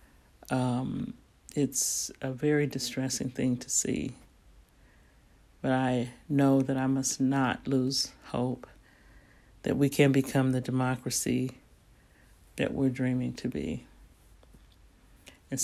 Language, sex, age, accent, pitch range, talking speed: English, male, 60-79, American, 120-135 Hz, 110 wpm